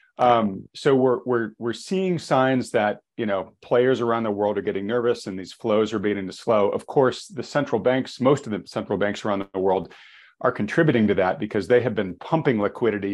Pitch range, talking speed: 100-115 Hz, 215 wpm